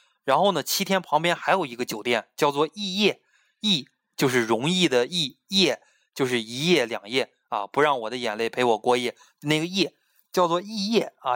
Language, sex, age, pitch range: Chinese, male, 20-39, 125-175 Hz